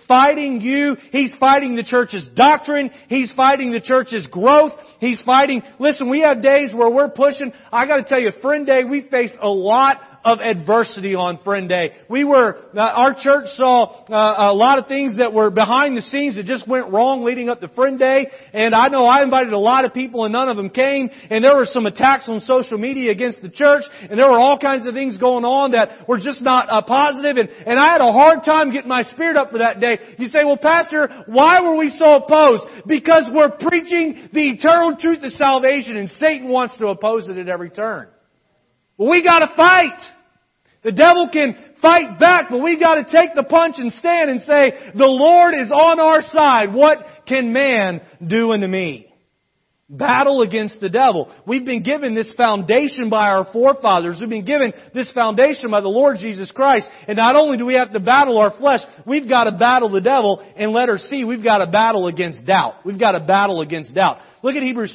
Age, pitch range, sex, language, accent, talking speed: 40-59, 220-285 Hz, male, English, American, 215 wpm